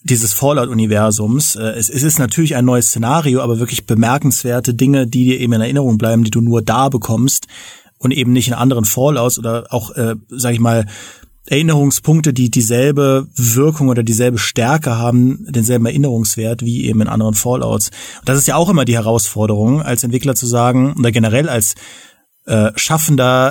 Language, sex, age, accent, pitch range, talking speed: German, male, 30-49, German, 115-140 Hz, 170 wpm